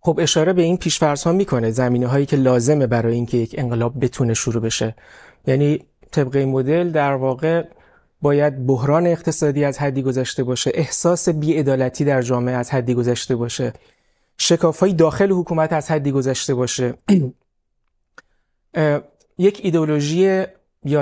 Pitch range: 130-165 Hz